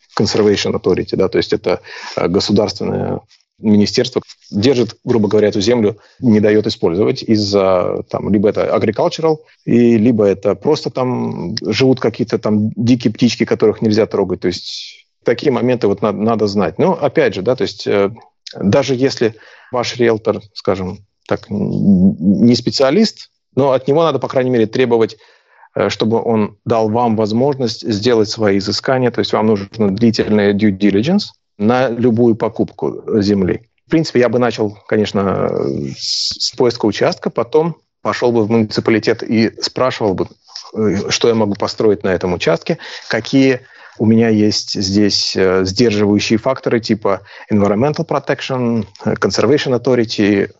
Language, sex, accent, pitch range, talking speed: Russian, male, native, 105-130 Hz, 140 wpm